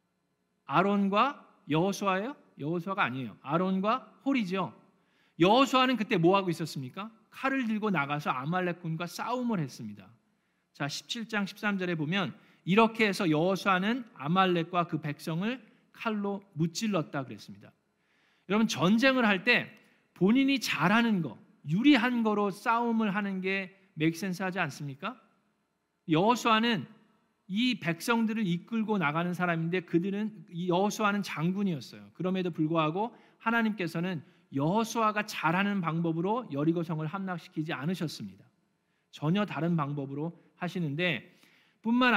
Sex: male